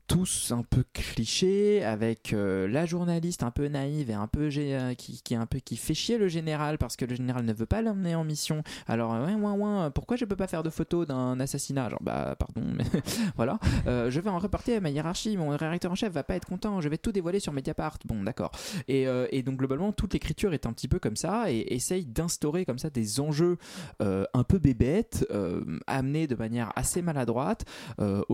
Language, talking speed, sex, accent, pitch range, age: French, 225 wpm, male, French, 110-165 Hz, 20-39